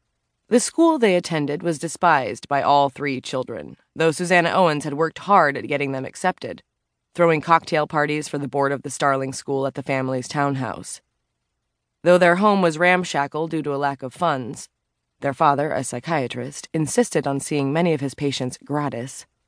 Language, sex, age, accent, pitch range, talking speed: English, female, 20-39, American, 130-165 Hz, 175 wpm